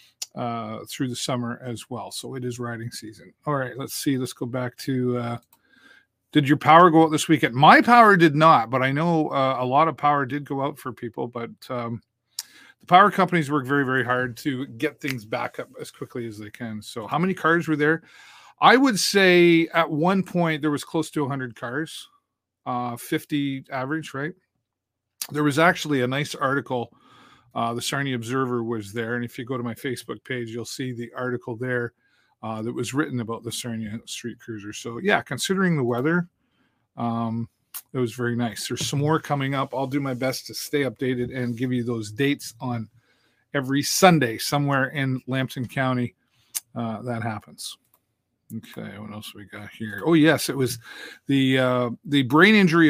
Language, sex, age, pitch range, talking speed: English, male, 40-59, 120-150 Hz, 195 wpm